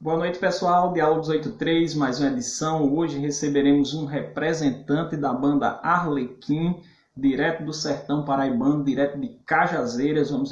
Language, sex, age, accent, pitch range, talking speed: Portuguese, male, 20-39, Brazilian, 135-170 Hz, 130 wpm